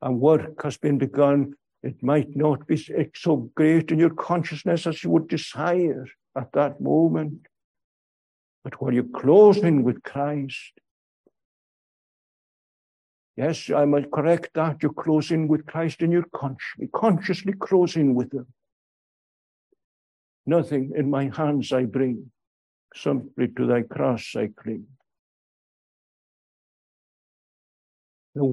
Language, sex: English, male